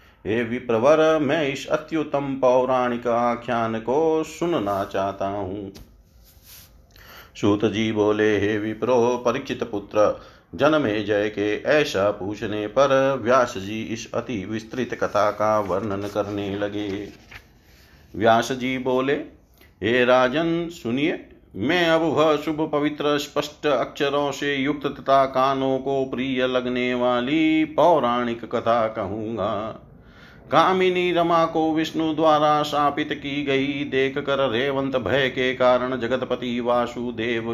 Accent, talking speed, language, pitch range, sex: native, 115 wpm, Hindi, 115-145 Hz, male